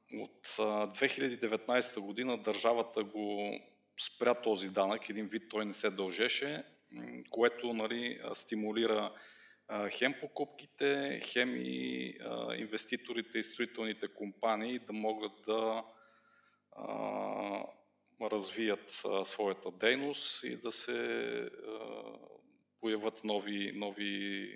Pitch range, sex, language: 105-125 Hz, male, Bulgarian